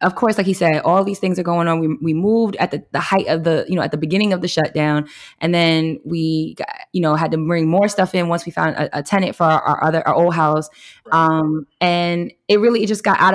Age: 20-39